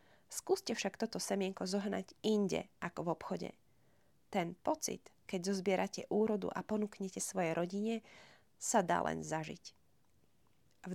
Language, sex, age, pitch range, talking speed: Slovak, female, 30-49, 180-215 Hz, 125 wpm